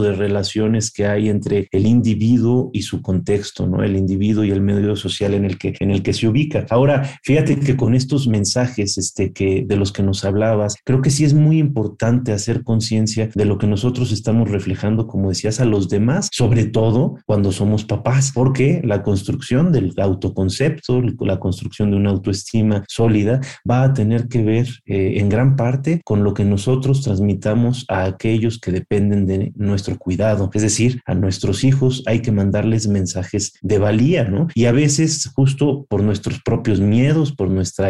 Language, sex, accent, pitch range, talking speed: Spanish, male, Mexican, 100-130 Hz, 185 wpm